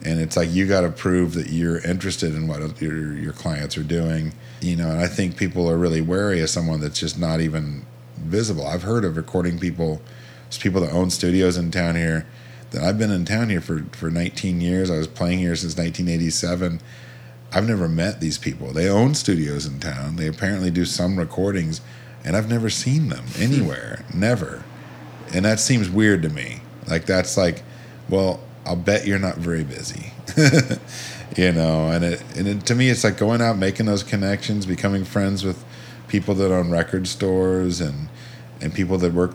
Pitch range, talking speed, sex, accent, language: 80-95 Hz, 195 wpm, male, American, English